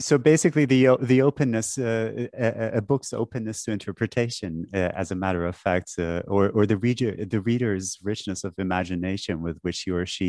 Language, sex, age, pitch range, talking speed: English, male, 30-49, 90-115 Hz, 185 wpm